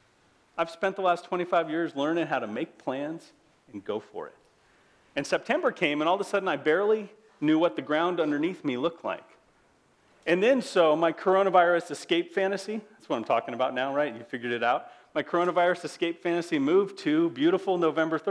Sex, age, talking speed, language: male, 40-59, 195 wpm, English